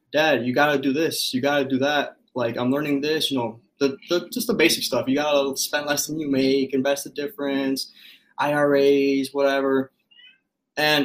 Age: 20-39